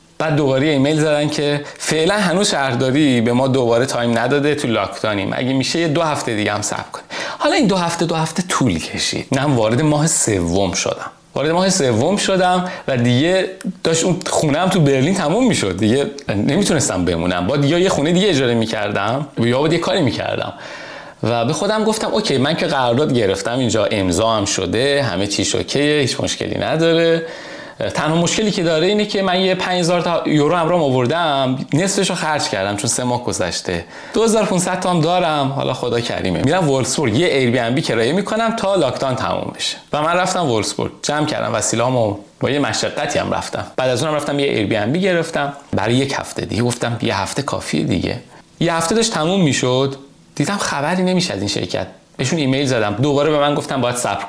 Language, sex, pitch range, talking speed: Persian, male, 125-180 Hz, 185 wpm